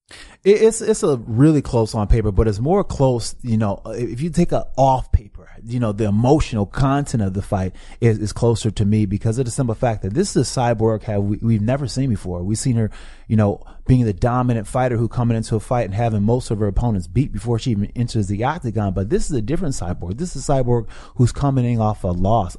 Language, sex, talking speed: English, male, 235 wpm